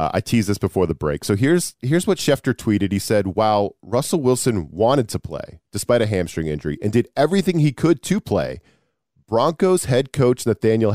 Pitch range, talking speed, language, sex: 105-135 Hz, 190 wpm, English, male